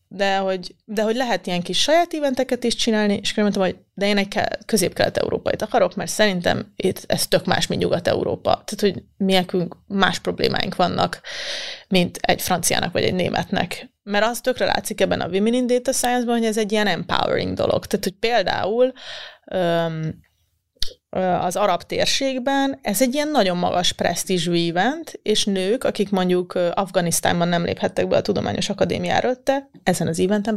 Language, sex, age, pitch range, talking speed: Hungarian, female, 30-49, 180-235 Hz, 170 wpm